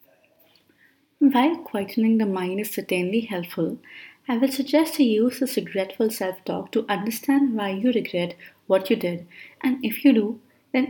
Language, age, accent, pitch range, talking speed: English, 30-49, Indian, 190-260 Hz, 155 wpm